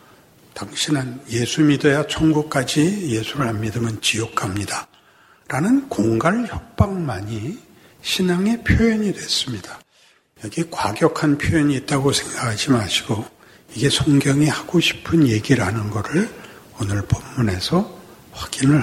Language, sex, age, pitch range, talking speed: English, male, 60-79, 125-195 Hz, 95 wpm